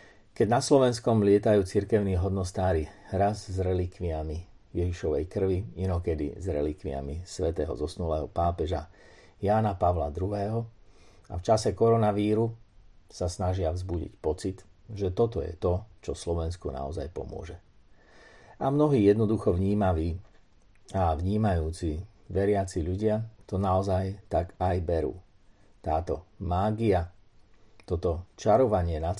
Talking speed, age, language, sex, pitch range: 110 wpm, 50-69, Slovak, male, 85-100 Hz